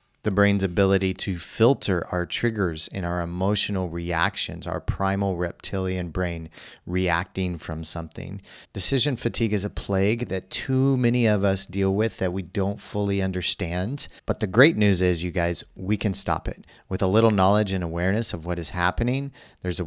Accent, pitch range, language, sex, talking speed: American, 90-105 Hz, English, male, 175 wpm